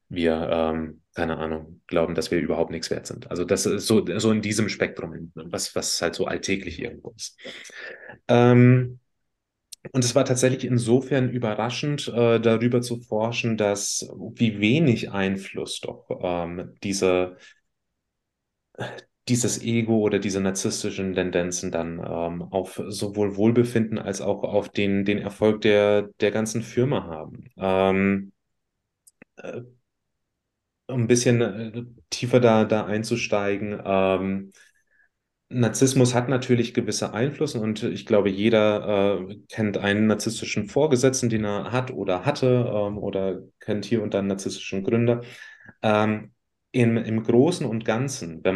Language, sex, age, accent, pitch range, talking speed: German, male, 30-49, German, 95-115 Hz, 135 wpm